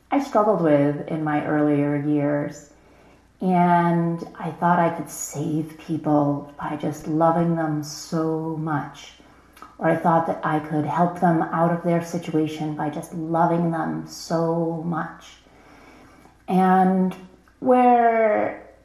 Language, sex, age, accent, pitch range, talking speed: English, female, 30-49, American, 155-185 Hz, 125 wpm